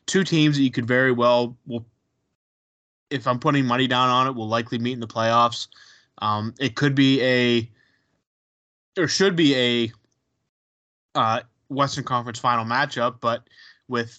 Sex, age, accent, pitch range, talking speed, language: male, 20-39, American, 115-135 Hz, 155 wpm, English